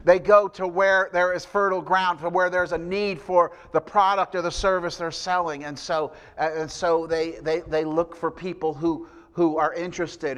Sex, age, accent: male, 50-69, American